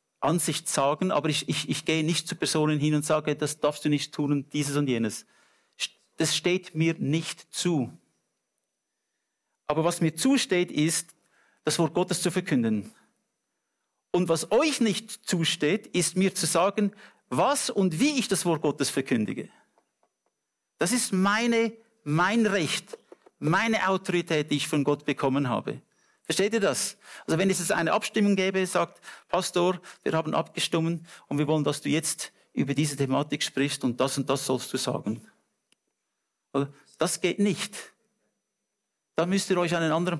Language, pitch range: English, 150-195 Hz